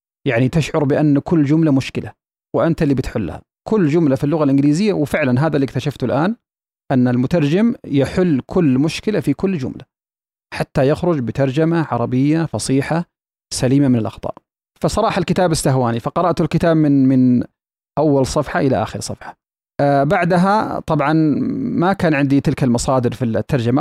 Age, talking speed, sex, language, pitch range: 30-49, 145 wpm, male, Arabic, 130-160 Hz